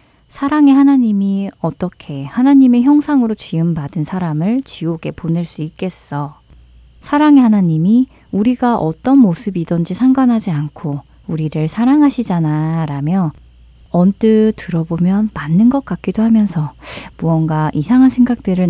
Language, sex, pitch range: Korean, female, 155-220 Hz